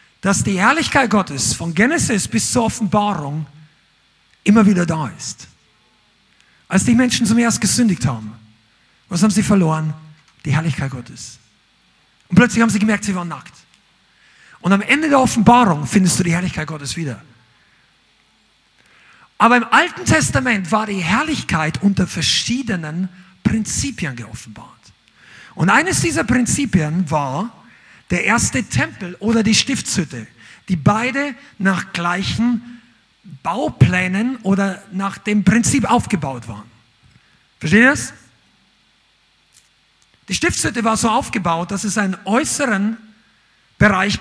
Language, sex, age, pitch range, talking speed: German, male, 50-69, 155-225 Hz, 125 wpm